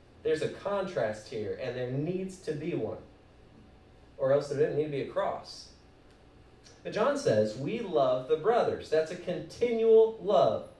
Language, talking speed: English, 165 wpm